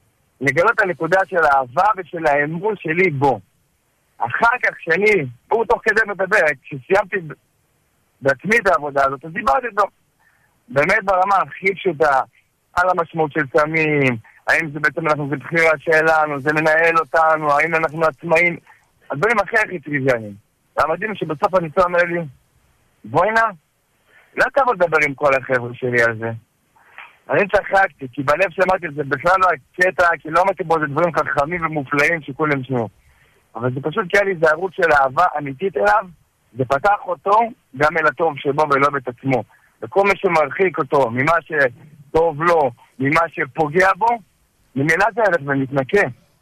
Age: 50-69